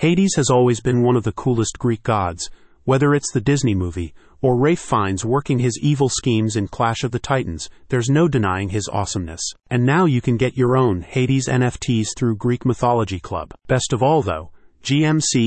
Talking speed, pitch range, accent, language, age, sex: 195 wpm, 110-135 Hz, American, English, 40-59, male